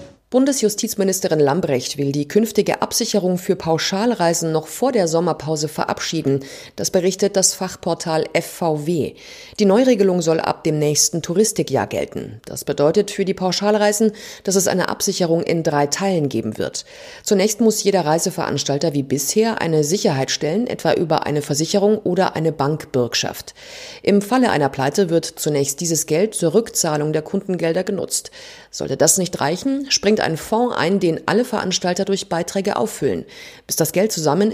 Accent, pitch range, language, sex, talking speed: German, 155-210 Hz, German, female, 150 wpm